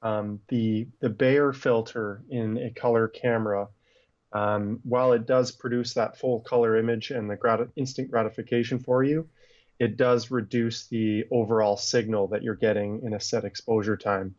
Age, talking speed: 30-49, 165 wpm